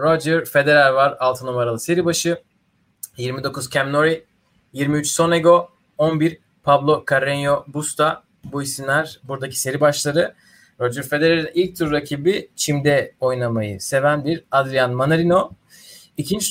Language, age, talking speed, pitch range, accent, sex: Turkish, 30-49, 115 wpm, 130-170 Hz, native, male